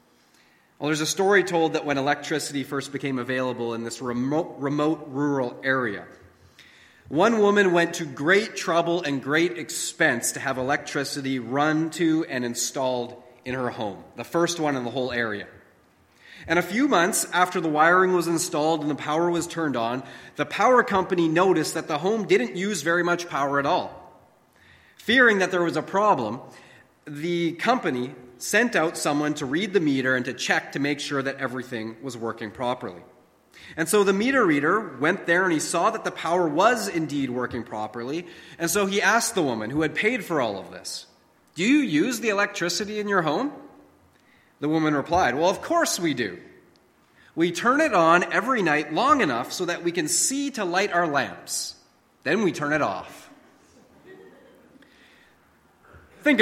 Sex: male